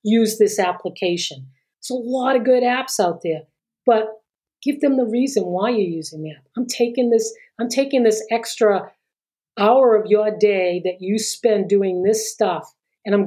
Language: English